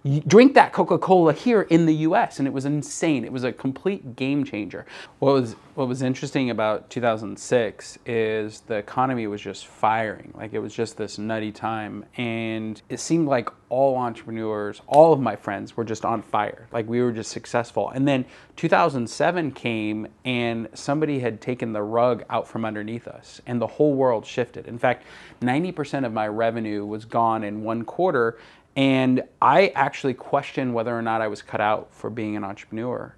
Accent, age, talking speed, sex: American, 20-39, 180 wpm, male